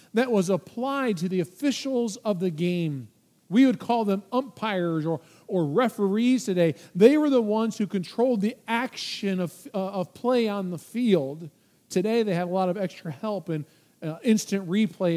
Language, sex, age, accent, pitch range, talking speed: English, male, 40-59, American, 190-260 Hz, 180 wpm